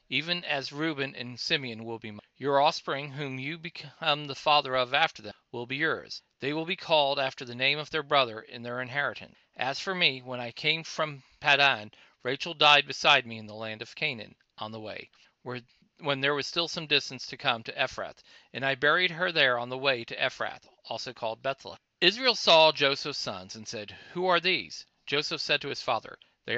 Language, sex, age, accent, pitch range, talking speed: English, male, 40-59, American, 125-155 Hz, 210 wpm